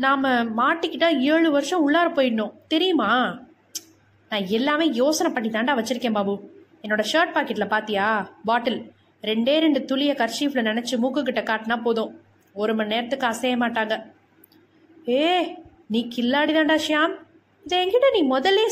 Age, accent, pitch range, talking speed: 20-39, native, 220-315 Hz, 120 wpm